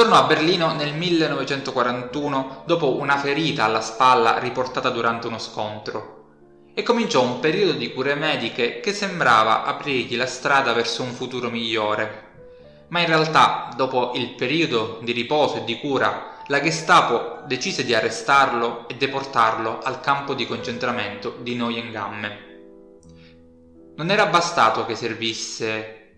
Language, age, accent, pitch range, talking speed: Italian, 20-39, native, 110-145 Hz, 135 wpm